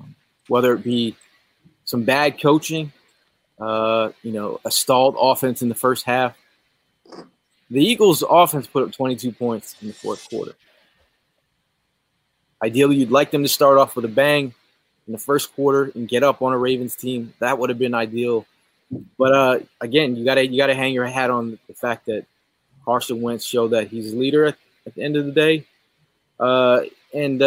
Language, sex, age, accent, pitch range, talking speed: English, male, 20-39, American, 120-145 Hz, 185 wpm